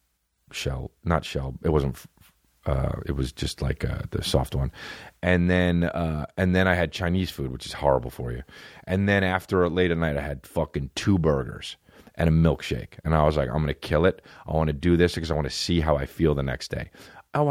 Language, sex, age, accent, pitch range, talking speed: English, male, 30-49, American, 75-115 Hz, 245 wpm